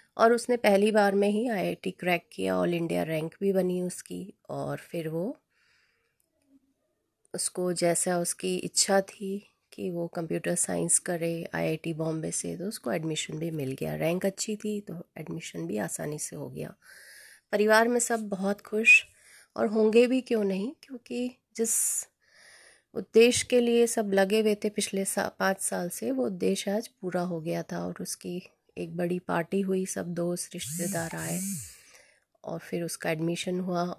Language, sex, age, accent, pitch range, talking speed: Hindi, female, 30-49, native, 170-230 Hz, 165 wpm